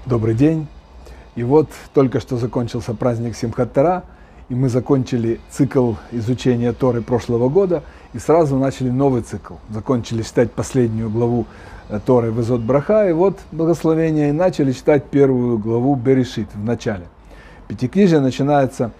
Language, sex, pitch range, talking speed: Russian, male, 120-155 Hz, 135 wpm